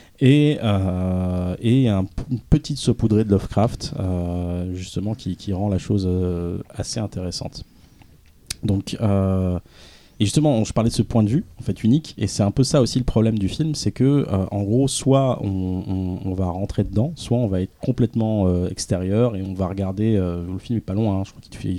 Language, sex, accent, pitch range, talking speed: French, male, French, 90-115 Hz, 205 wpm